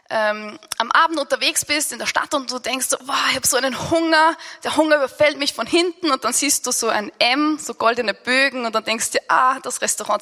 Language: German